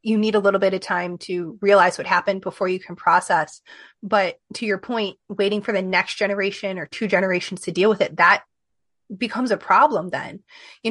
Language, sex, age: English, female, 30-49